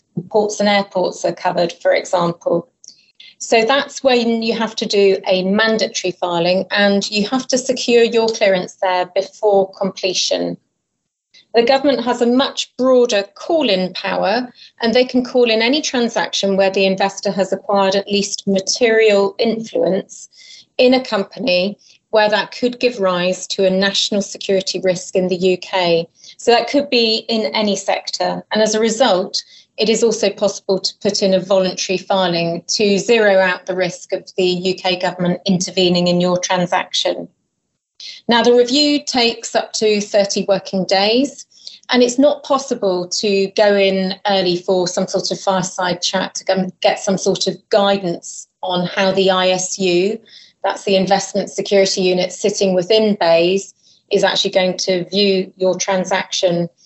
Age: 30-49